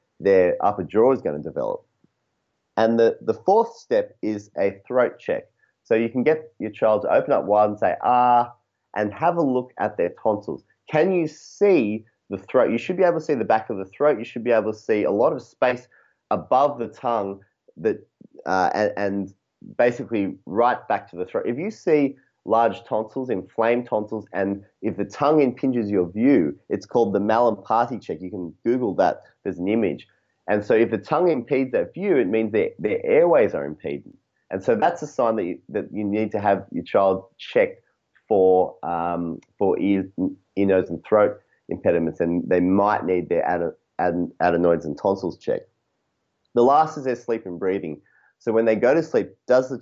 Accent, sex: Australian, male